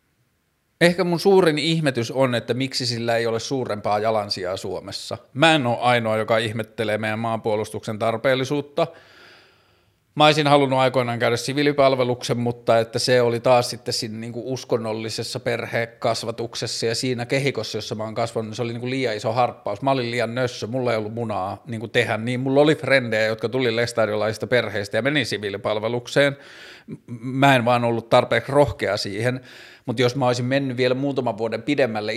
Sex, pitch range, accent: male, 110-130 Hz, native